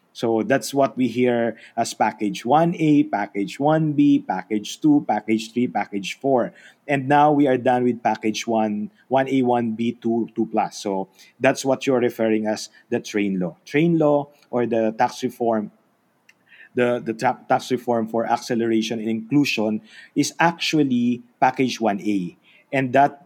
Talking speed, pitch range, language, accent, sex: 155 wpm, 115-135 Hz, English, Filipino, male